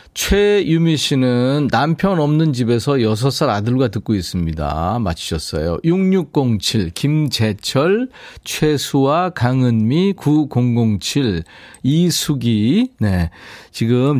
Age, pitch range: 40-59, 105-155 Hz